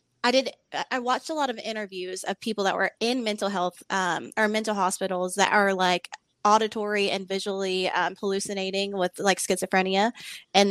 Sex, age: female, 20-39